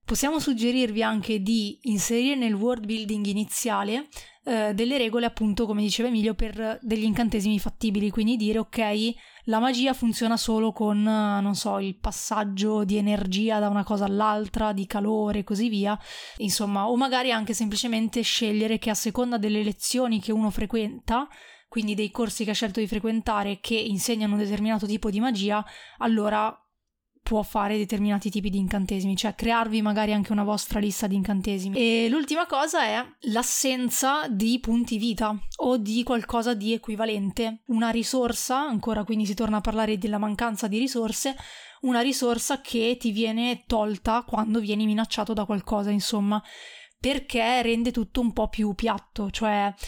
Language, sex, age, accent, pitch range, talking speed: Italian, female, 20-39, native, 210-235 Hz, 160 wpm